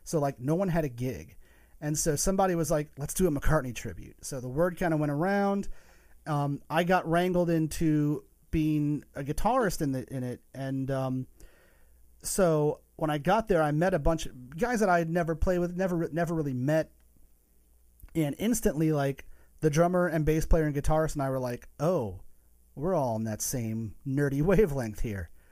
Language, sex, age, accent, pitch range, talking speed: English, male, 30-49, American, 130-170 Hz, 195 wpm